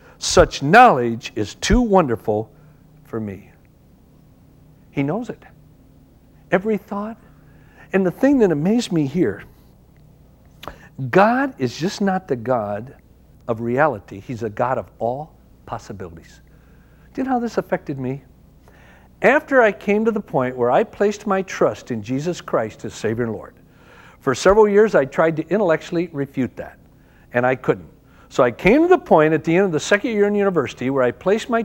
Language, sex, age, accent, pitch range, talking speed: English, male, 60-79, American, 130-205 Hz, 170 wpm